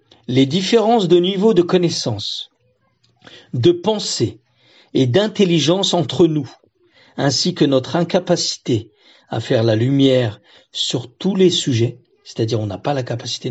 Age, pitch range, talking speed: 50-69, 120-170 Hz, 135 wpm